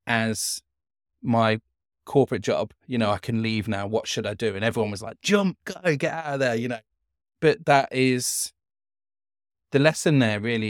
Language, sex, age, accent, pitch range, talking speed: English, male, 20-39, British, 110-140 Hz, 185 wpm